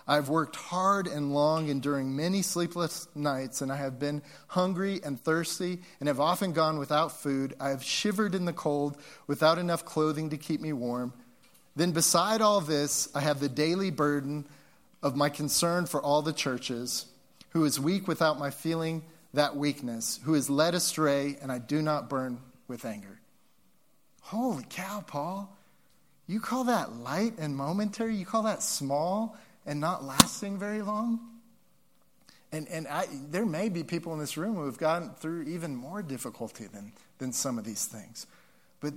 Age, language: 30-49, English